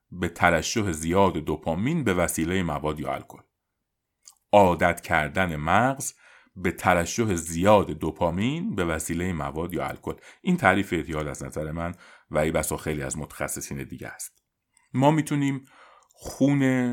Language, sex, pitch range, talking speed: Persian, male, 85-115 Hz, 135 wpm